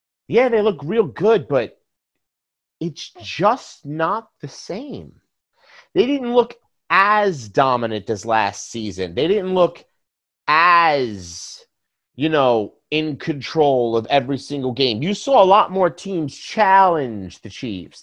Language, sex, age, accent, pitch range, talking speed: English, male, 30-49, American, 150-200 Hz, 135 wpm